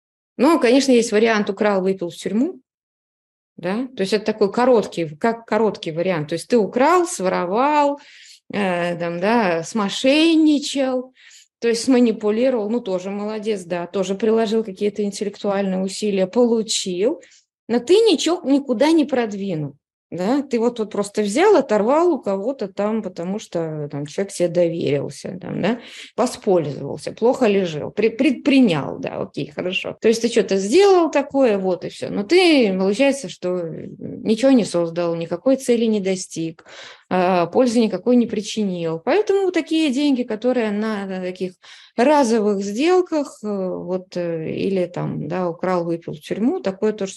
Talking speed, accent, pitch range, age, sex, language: 135 wpm, native, 185-260 Hz, 20-39, female, Russian